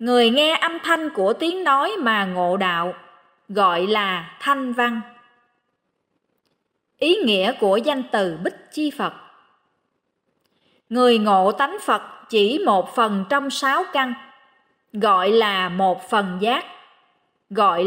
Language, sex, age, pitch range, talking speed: Vietnamese, female, 20-39, 215-335 Hz, 130 wpm